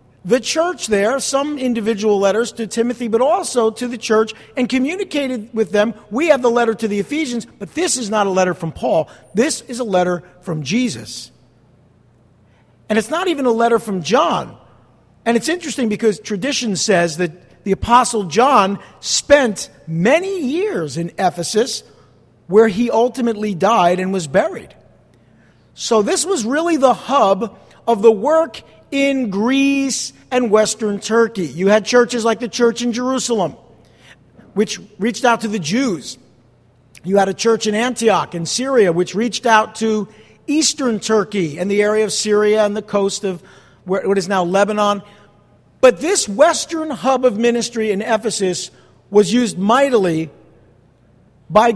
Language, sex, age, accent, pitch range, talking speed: English, male, 50-69, American, 180-245 Hz, 155 wpm